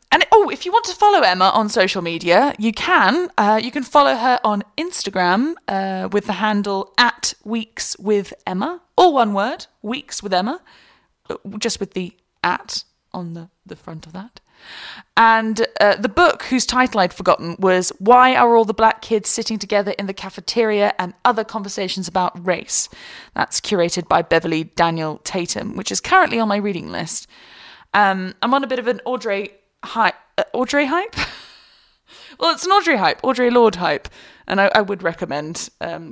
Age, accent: 10-29, British